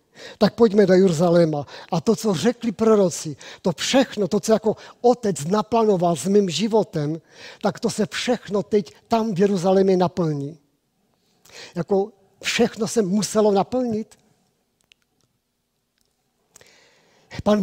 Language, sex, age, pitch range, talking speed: Czech, male, 50-69, 170-210 Hz, 115 wpm